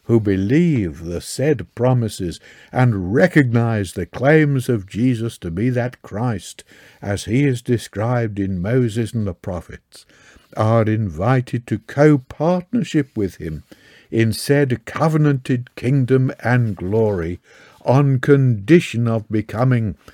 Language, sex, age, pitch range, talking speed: English, male, 60-79, 100-135 Hz, 120 wpm